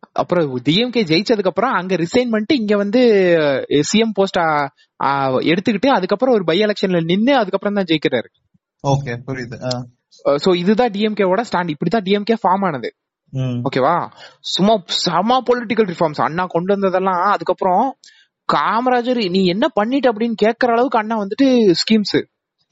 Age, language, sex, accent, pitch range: 20-39, Tamil, male, native, 145-220 Hz